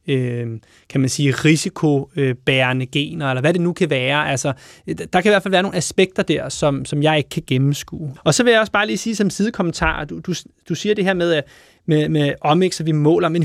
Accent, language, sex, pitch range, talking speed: native, Danish, male, 155-195 Hz, 230 wpm